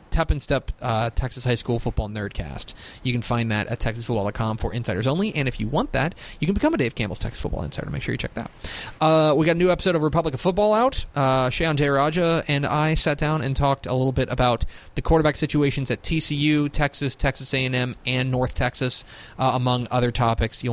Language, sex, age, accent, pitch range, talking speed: English, male, 30-49, American, 110-145 Hz, 230 wpm